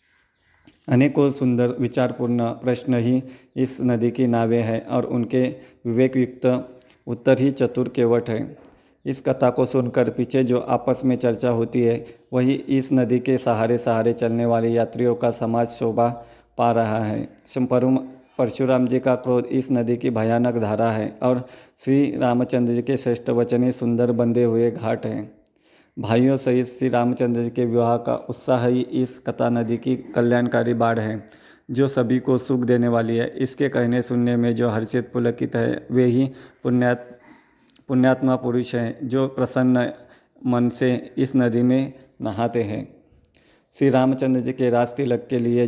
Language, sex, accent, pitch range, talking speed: Hindi, male, native, 120-130 Hz, 160 wpm